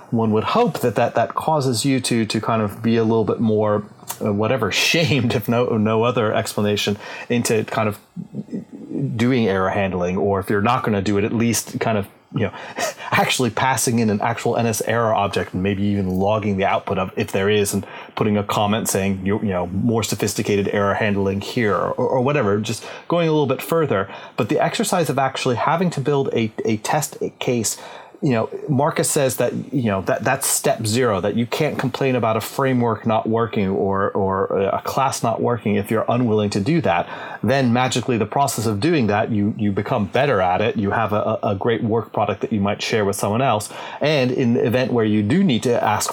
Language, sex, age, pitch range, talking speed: English, male, 30-49, 105-125 Hz, 215 wpm